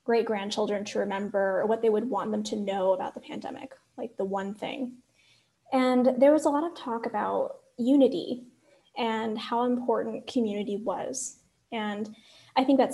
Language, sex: English, female